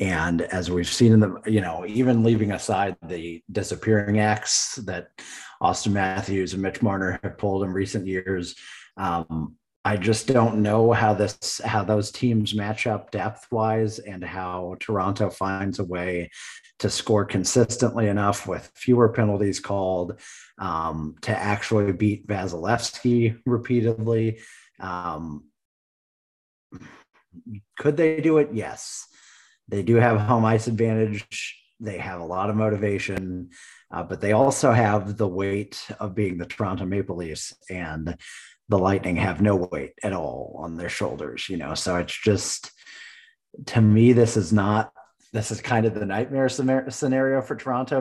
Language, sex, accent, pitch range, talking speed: English, male, American, 95-110 Hz, 150 wpm